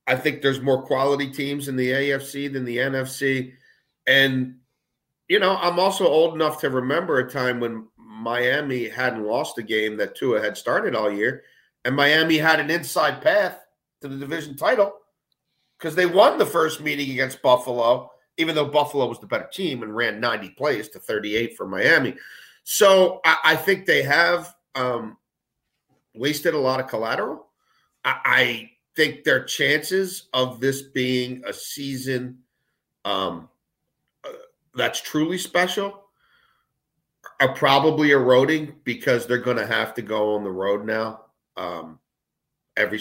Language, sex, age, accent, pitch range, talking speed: English, male, 40-59, American, 125-160 Hz, 155 wpm